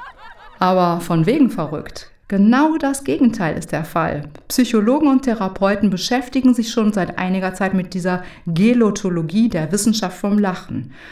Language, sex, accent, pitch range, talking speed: German, female, German, 175-230 Hz, 140 wpm